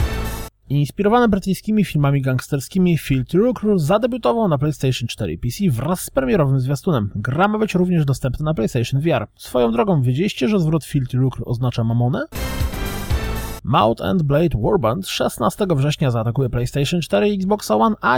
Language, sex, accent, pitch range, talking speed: Polish, male, native, 120-195 Hz, 150 wpm